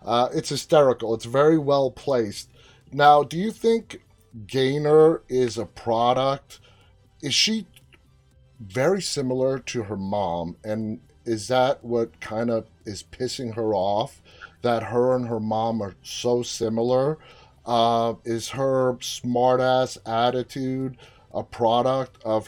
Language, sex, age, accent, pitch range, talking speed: English, male, 30-49, American, 115-140 Hz, 130 wpm